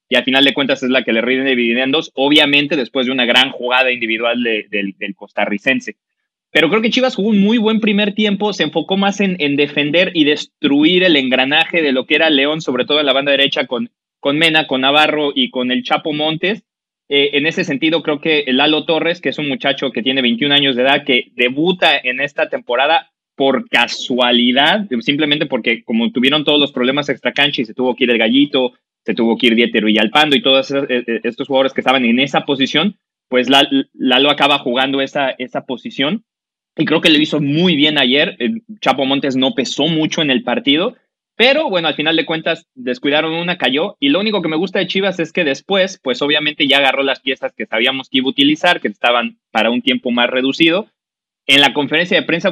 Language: English